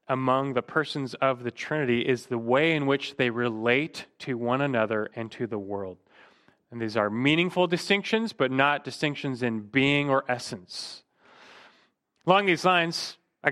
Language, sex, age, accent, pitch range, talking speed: English, male, 30-49, American, 120-175 Hz, 160 wpm